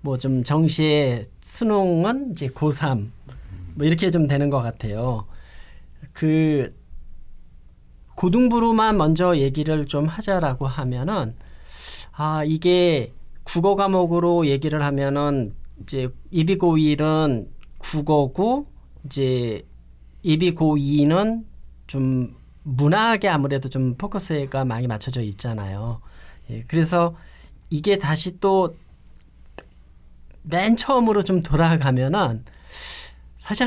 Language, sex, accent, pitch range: Korean, male, native, 125-180 Hz